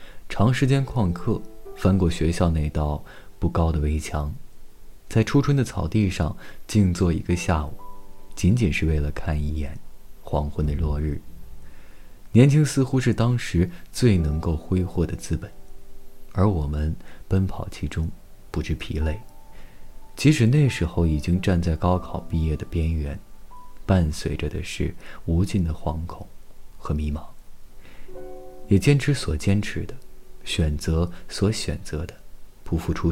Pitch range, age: 80-100 Hz, 20-39